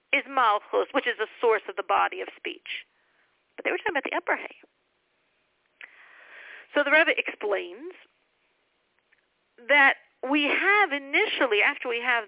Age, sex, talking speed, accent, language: 50-69, female, 145 wpm, American, English